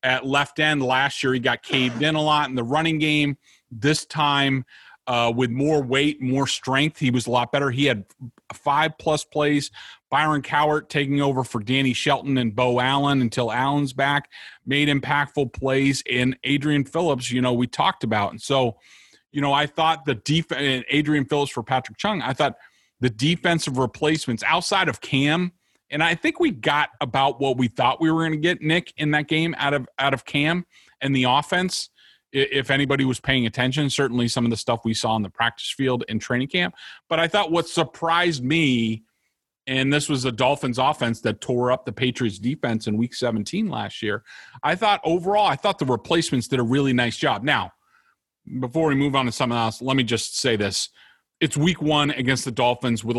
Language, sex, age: English, male, 30-49